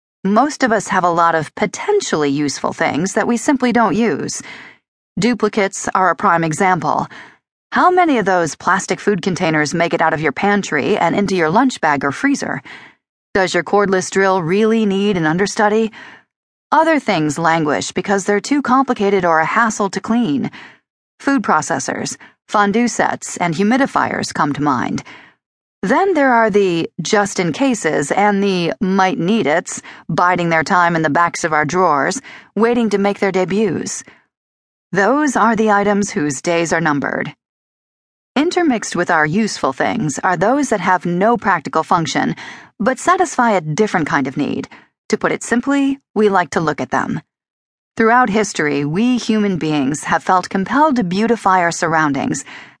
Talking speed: 160 wpm